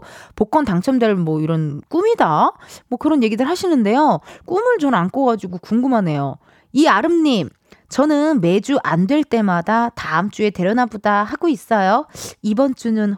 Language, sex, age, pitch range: Korean, female, 20-39, 185-295 Hz